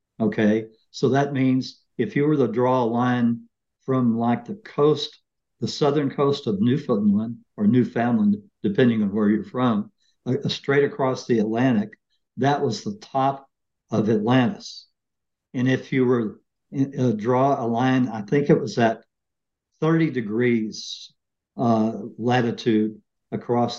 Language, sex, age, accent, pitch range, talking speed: English, male, 60-79, American, 115-135 Hz, 140 wpm